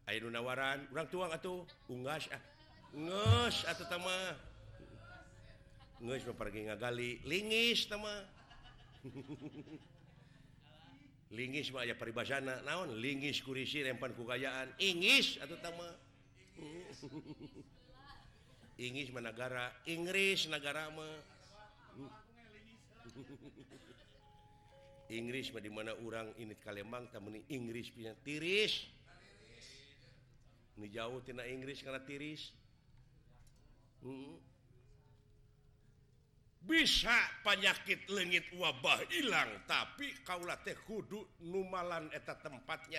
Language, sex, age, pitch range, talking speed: Indonesian, male, 50-69, 115-145 Hz, 90 wpm